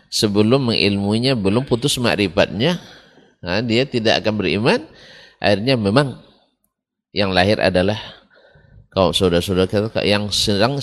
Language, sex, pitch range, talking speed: Indonesian, male, 100-160 Hz, 100 wpm